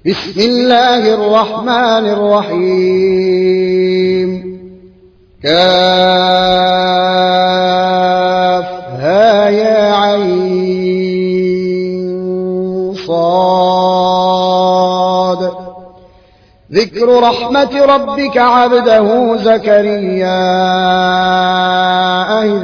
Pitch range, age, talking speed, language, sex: 185-235 Hz, 30-49, 35 wpm, Arabic, male